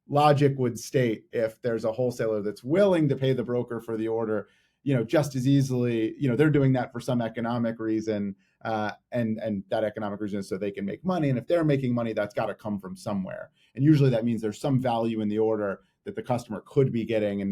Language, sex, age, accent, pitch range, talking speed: English, male, 30-49, American, 105-135 Hz, 240 wpm